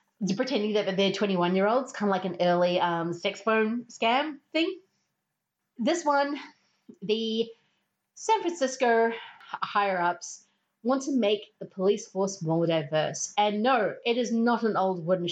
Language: English